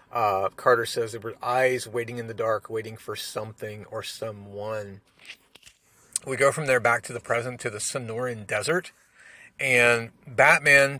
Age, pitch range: 40-59, 115-135 Hz